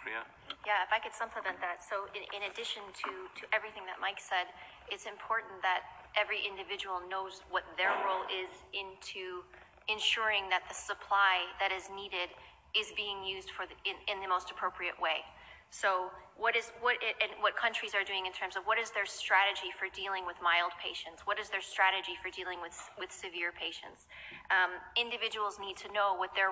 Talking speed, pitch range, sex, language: 190 wpm, 185-205 Hz, female, English